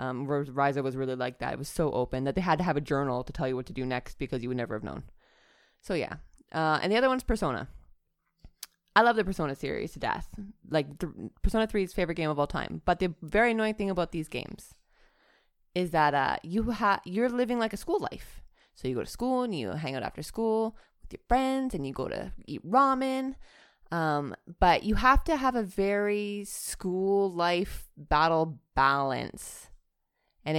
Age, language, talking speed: 20-39, English, 210 wpm